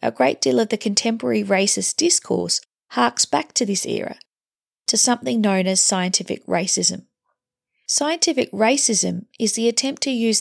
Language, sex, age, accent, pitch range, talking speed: English, female, 40-59, Australian, 195-235 Hz, 150 wpm